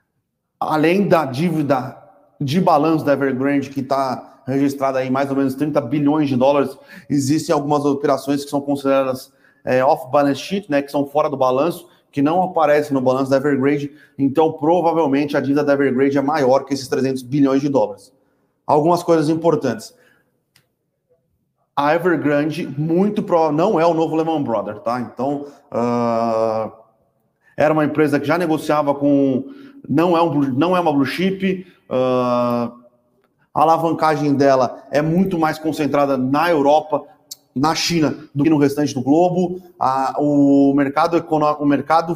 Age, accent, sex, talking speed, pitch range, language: 30-49, Brazilian, male, 145 wpm, 135-160 Hz, Portuguese